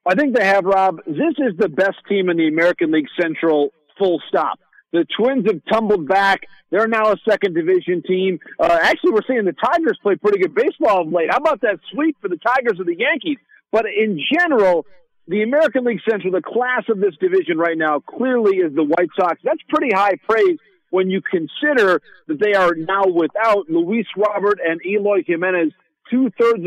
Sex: male